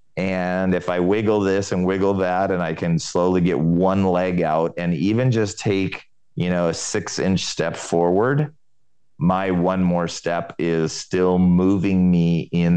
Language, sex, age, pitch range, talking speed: English, male, 30-49, 80-95 Hz, 170 wpm